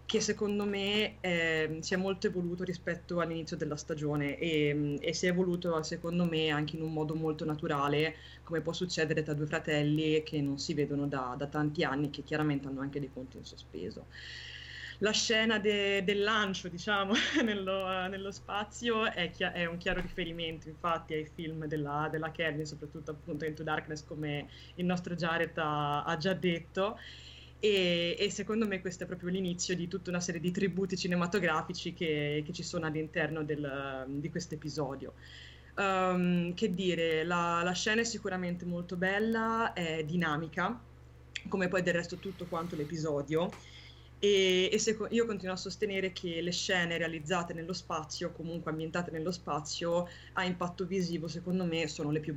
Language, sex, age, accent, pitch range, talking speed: Italian, female, 20-39, native, 155-185 Hz, 170 wpm